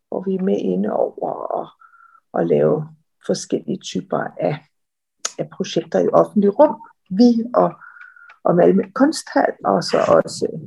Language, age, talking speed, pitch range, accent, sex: Danish, 50-69, 140 wpm, 170-230 Hz, native, female